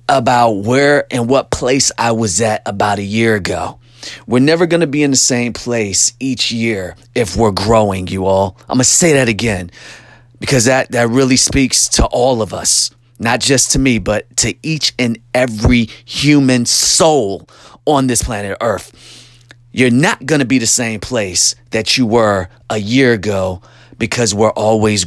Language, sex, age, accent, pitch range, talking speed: English, male, 30-49, American, 110-135 Hz, 180 wpm